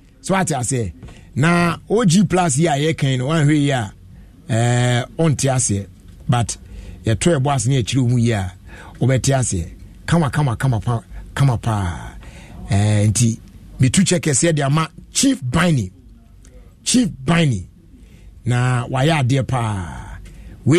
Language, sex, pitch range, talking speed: English, male, 105-170 Hz, 130 wpm